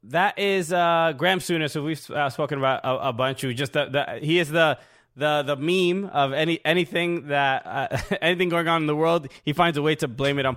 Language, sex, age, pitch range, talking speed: English, male, 20-39, 130-175 Hz, 240 wpm